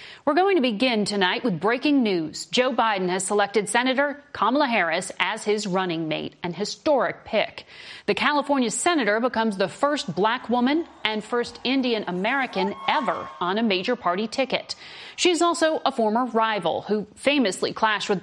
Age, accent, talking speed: 40-59, American, 160 wpm